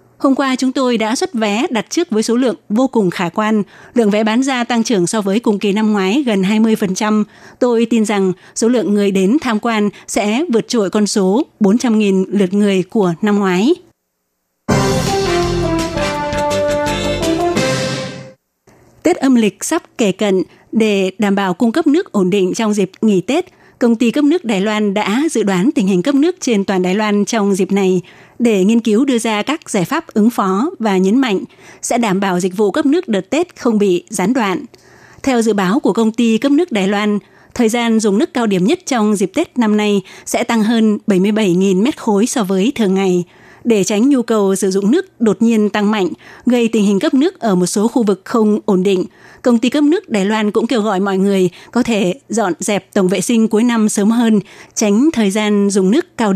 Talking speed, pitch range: 210 wpm, 195-240 Hz